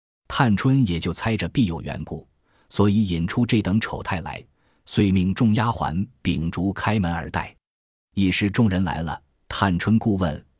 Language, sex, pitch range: Chinese, male, 85-110 Hz